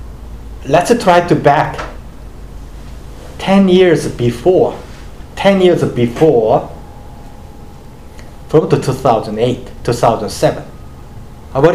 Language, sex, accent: Korean, male, Japanese